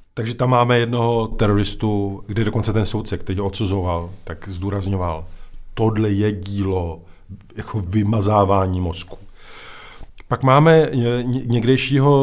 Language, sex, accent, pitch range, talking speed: Czech, male, native, 95-115 Hz, 115 wpm